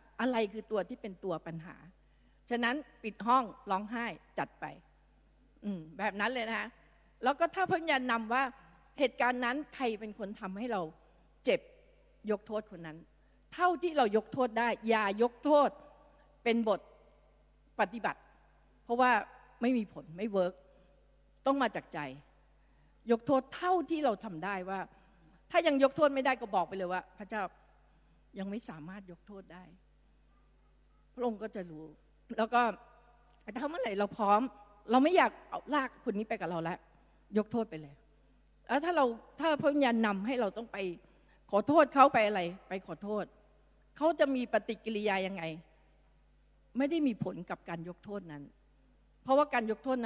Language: Thai